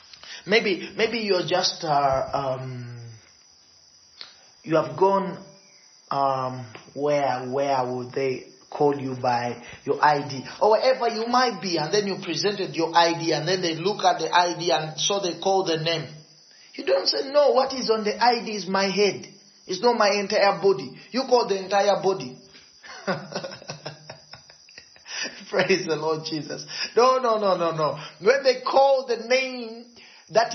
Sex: male